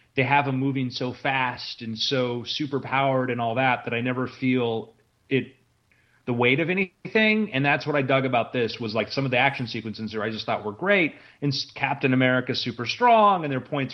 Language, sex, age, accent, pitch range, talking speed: English, male, 30-49, American, 120-150 Hz, 210 wpm